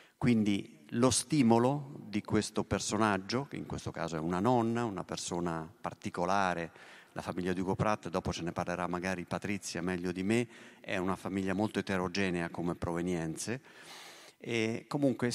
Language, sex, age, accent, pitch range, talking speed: Italian, male, 30-49, native, 95-120 Hz, 155 wpm